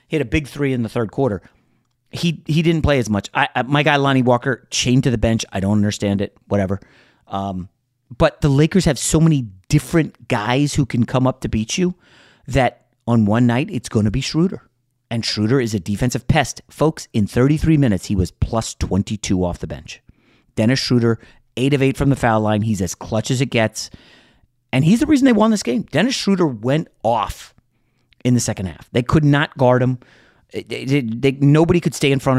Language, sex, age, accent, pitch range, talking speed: English, male, 30-49, American, 110-145 Hz, 210 wpm